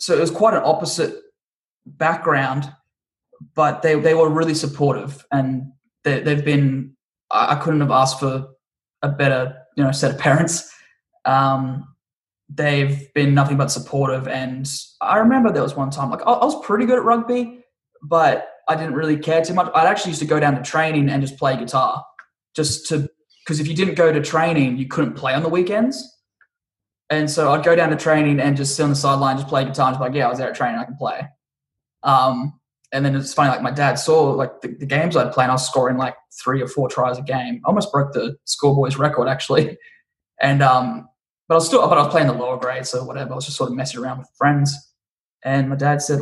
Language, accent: English, Australian